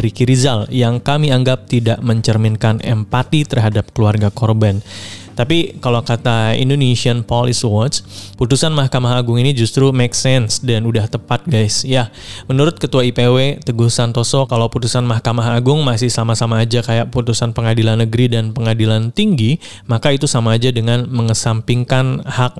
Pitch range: 110-130 Hz